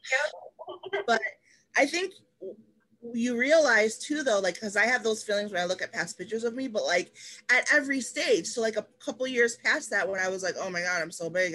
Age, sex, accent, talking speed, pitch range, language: 20-39, female, American, 230 wpm, 170-245 Hz, English